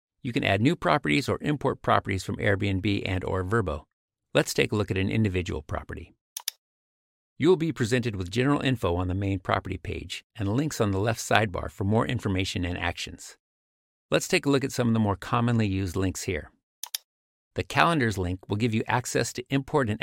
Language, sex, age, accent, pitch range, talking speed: English, male, 50-69, American, 95-125 Hz, 200 wpm